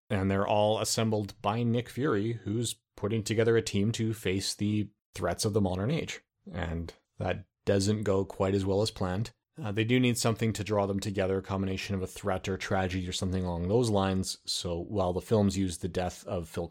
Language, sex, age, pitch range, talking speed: English, male, 30-49, 95-110 Hz, 210 wpm